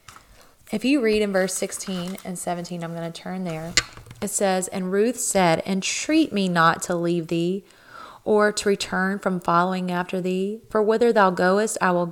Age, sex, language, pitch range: 30-49, female, English, 175-205 Hz